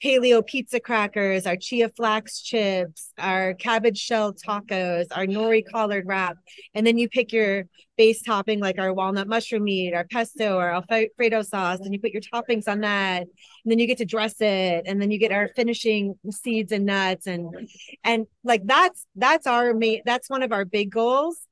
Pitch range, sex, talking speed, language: 195-235 Hz, female, 190 wpm, English